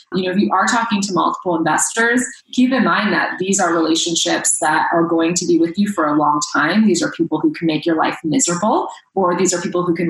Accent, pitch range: American, 165-215 Hz